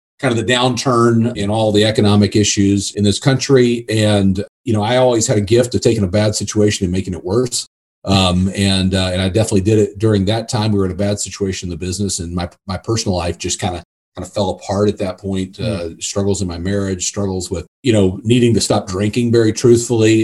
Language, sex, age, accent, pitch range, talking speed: English, male, 40-59, American, 100-120 Hz, 230 wpm